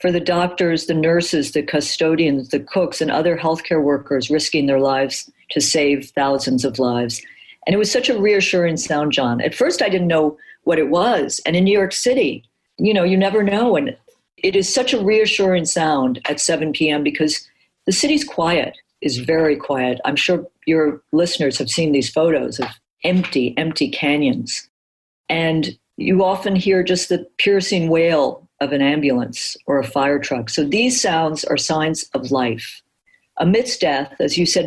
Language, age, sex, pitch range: English, 50-69, female, 145-185 Hz